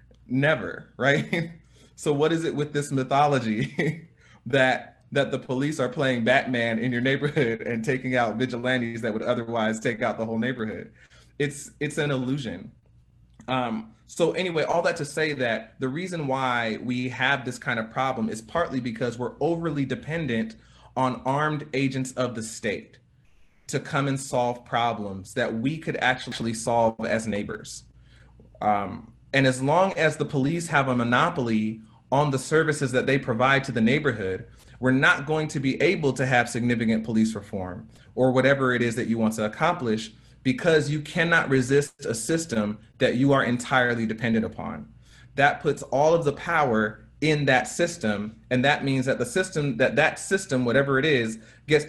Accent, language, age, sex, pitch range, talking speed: American, English, 30-49, male, 115-145 Hz, 170 wpm